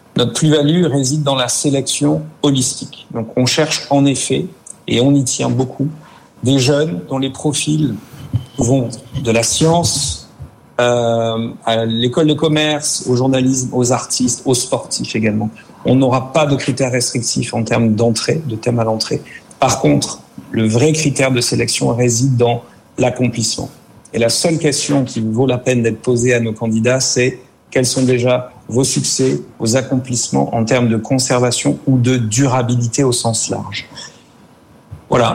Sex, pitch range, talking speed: male, 120-140 Hz, 155 wpm